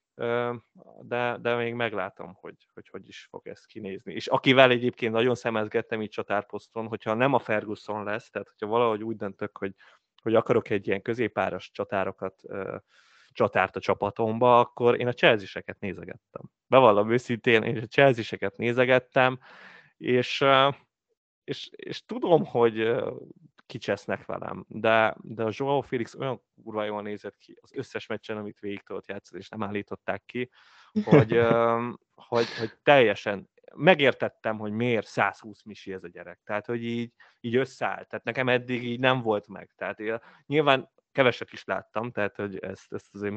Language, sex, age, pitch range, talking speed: Hungarian, male, 20-39, 105-120 Hz, 150 wpm